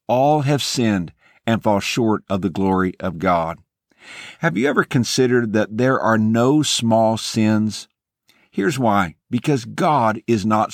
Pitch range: 105-140 Hz